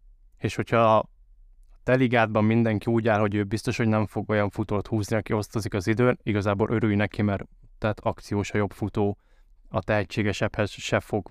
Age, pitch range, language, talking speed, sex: 20-39, 95-110 Hz, Hungarian, 175 wpm, male